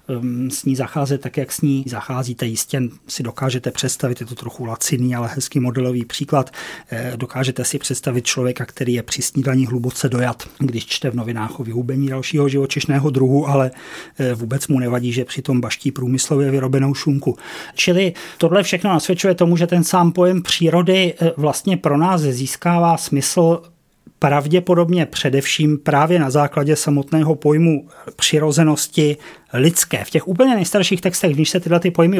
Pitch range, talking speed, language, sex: 135-175 Hz, 155 wpm, Czech, male